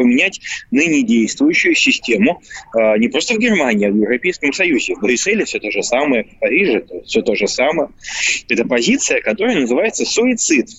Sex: male